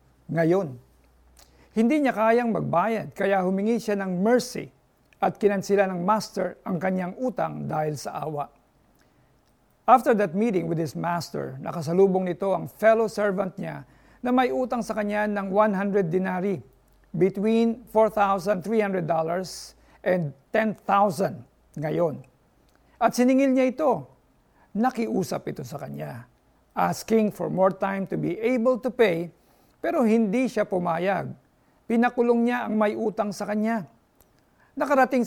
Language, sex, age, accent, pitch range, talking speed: Filipino, male, 50-69, native, 180-225 Hz, 125 wpm